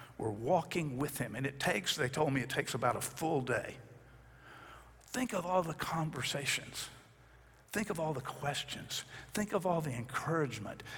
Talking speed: 170 wpm